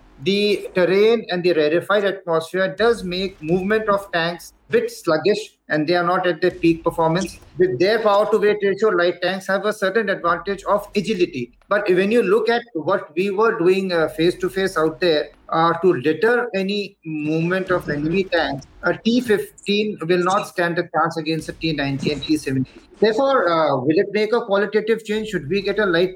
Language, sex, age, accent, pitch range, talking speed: English, male, 50-69, Indian, 165-205 Hz, 190 wpm